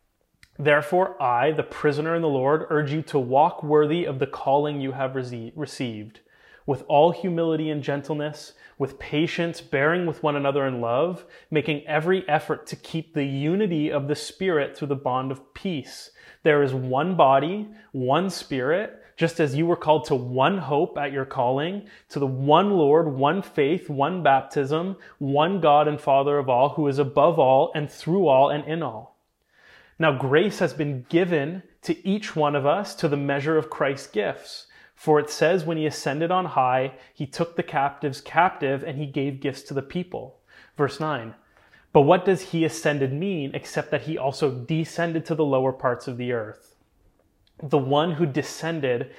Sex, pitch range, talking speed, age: male, 140-165 Hz, 180 wpm, 30-49